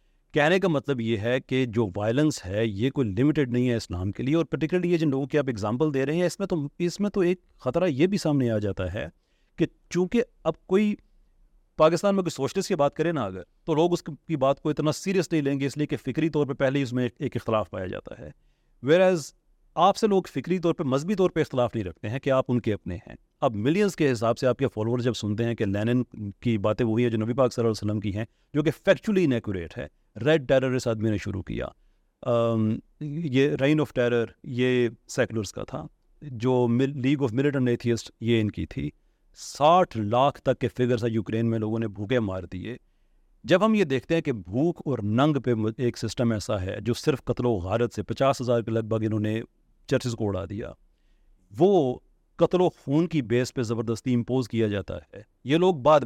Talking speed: 230 wpm